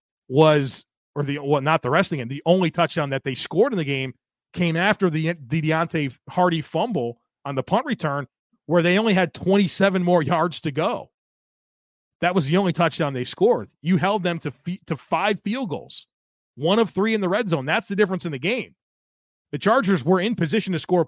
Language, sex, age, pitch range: English, male, 30-49, 145-190 Hz